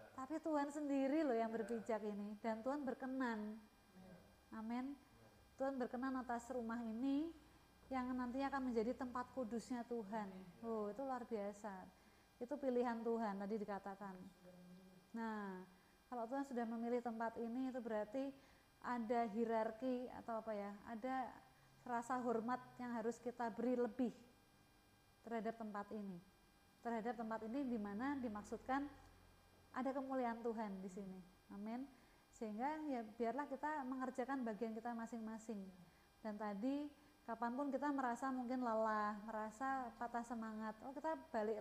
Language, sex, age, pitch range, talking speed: Indonesian, female, 30-49, 220-260 Hz, 130 wpm